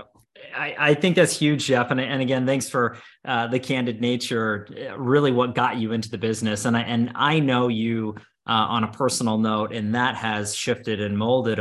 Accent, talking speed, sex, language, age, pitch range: American, 200 wpm, male, English, 30-49, 110-130 Hz